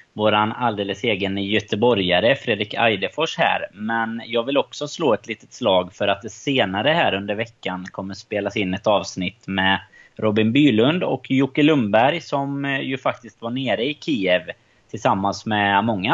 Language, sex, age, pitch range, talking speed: Swedish, male, 30-49, 105-130 Hz, 160 wpm